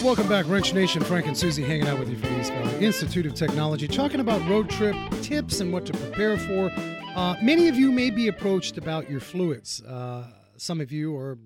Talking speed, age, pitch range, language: 215 wpm, 30-49, 150-220 Hz, English